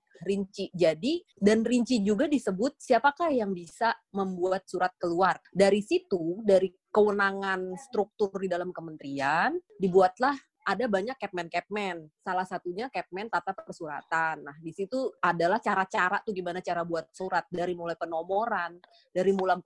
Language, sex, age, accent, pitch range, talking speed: Indonesian, female, 20-39, native, 175-215 Hz, 135 wpm